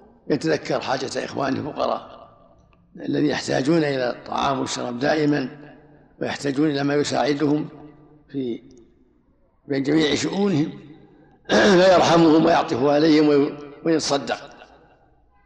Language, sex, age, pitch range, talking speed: Arabic, male, 60-79, 135-160 Hz, 85 wpm